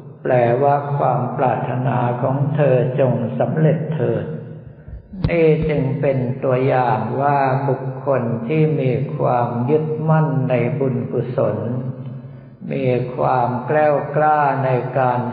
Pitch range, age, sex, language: 125-145 Hz, 60-79, male, Thai